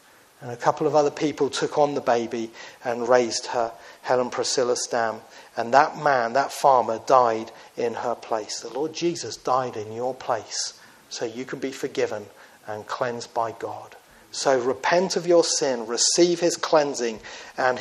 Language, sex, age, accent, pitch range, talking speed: English, male, 40-59, British, 130-175 Hz, 170 wpm